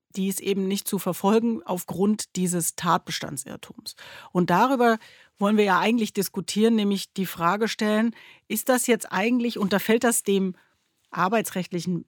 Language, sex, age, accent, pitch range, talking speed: German, female, 40-59, German, 185-235 Hz, 145 wpm